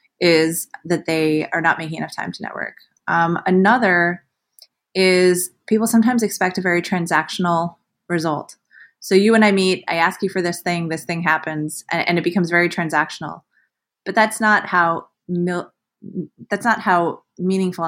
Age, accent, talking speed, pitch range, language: 20-39, American, 165 wpm, 160-185 Hz, English